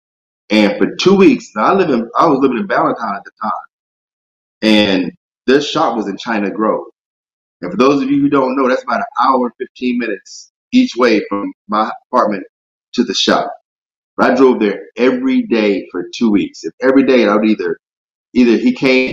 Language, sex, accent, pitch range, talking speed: English, male, American, 105-130 Hz, 195 wpm